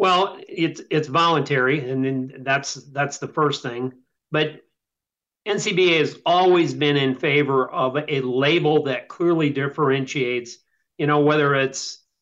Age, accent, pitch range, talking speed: 40-59, American, 135-160 Hz, 135 wpm